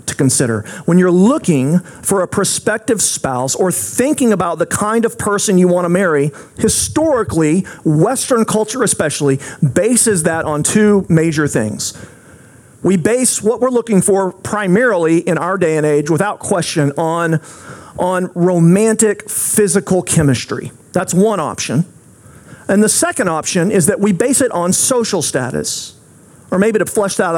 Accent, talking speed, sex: American, 150 wpm, male